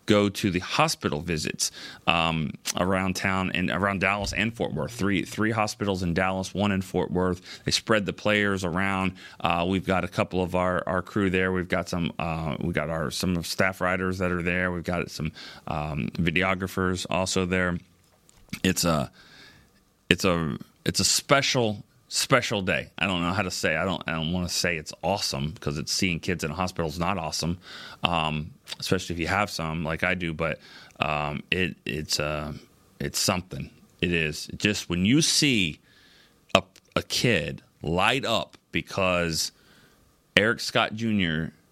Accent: American